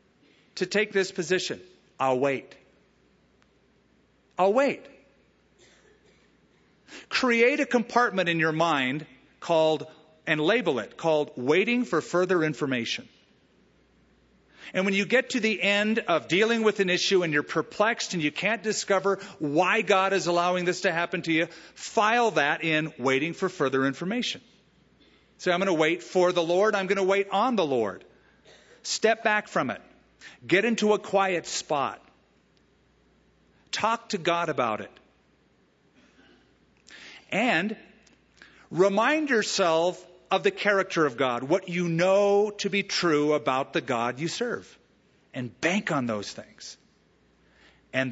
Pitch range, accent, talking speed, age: 155-205 Hz, American, 140 wpm, 40-59